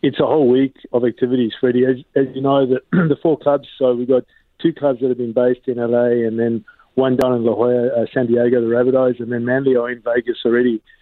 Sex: male